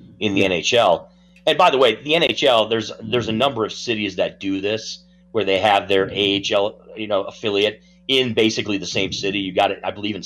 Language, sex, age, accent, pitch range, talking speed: English, male, 30-49, American, 100-135 Hz, 215 wpm